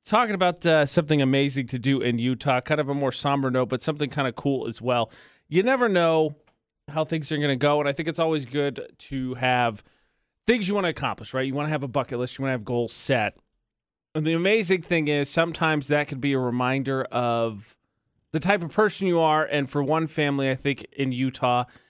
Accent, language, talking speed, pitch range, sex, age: American, English, 230 wpm, 120-155 Hz, male, 30-49